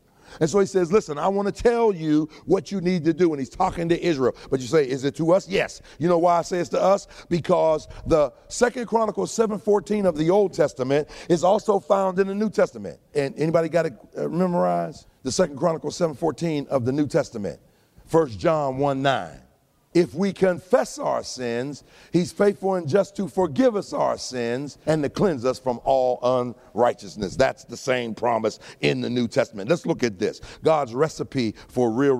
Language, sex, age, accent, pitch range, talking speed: English, male, 50-69, American, 130-190 Hz, 200 wpm